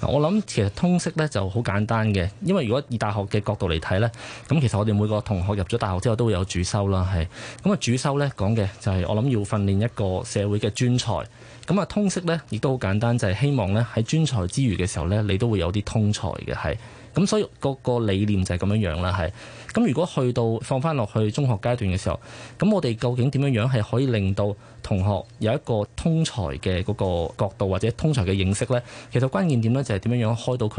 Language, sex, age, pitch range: Chinese, male, 20-39, 100-130 Hz